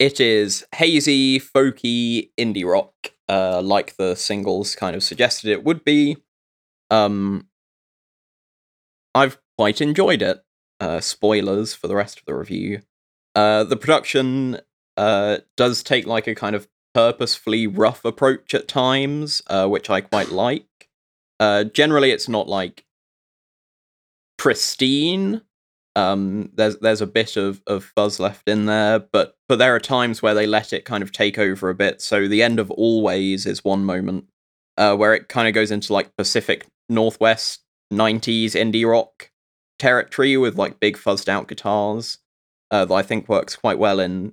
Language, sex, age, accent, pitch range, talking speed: English, male, 20-39, British, 100-125 Hz, 155 wpm